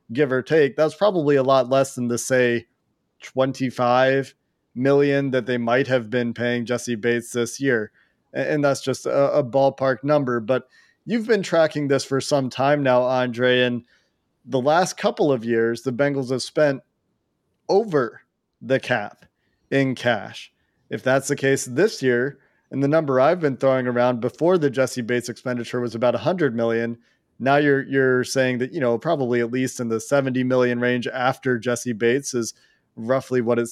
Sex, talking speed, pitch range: male, 175 wpm, 120-140 Hz